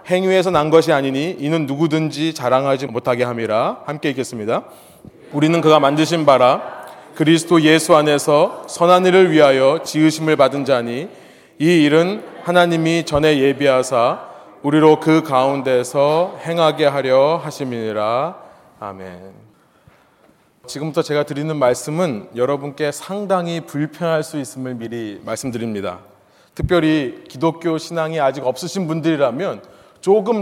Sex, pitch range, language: male, 130-165 Hz, Korean